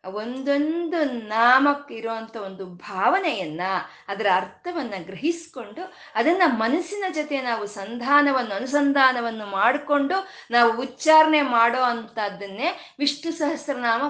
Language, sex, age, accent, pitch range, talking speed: Kannada, female, 20-39, native, 215-305 Hz, 80 wpm